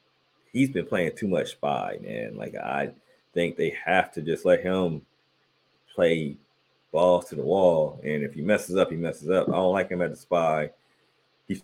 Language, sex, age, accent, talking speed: English, male, 30-49, American, 190 wpm